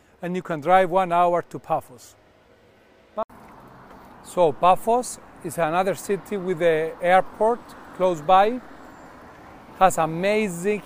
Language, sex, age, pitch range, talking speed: Greek, male, 40-59, 165-200 Hz, 110 wpm